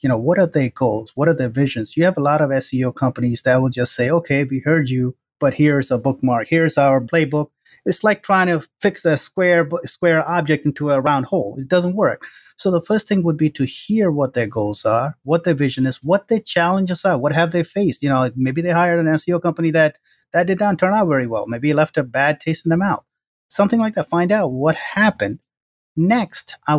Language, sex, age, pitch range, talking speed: English, male, 30-49, 135-170 Hz, 235 wpm